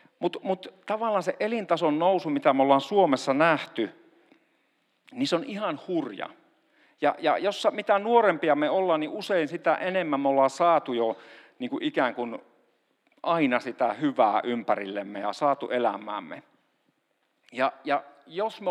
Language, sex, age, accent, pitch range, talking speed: Finnish, male, 50-69, native, 125-200 Hz, 145 wpm